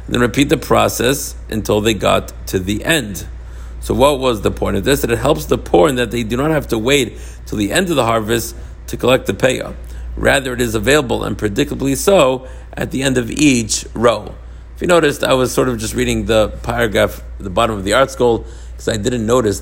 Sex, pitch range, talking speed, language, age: male, 100-130 Hz, 225 wpm, English, 50-69